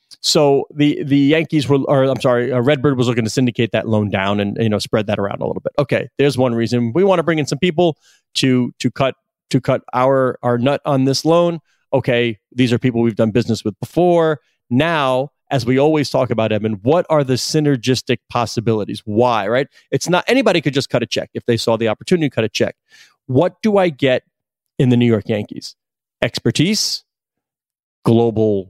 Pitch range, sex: 115-145 Hz, male